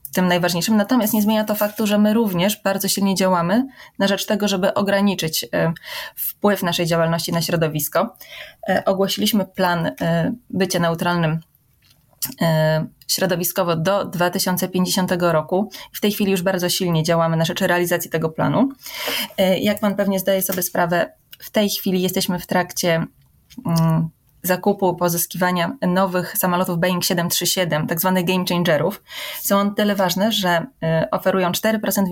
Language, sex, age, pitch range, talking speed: Polish, female, 20-39, 175-210 Hz, 135 wpm